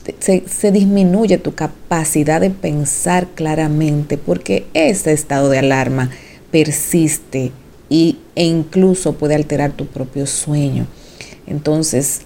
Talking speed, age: 110 wpm, 40-59